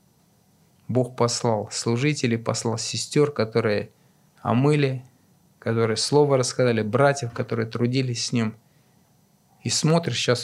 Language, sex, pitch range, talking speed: Russian, male, 125-185 Hz, 105 wpm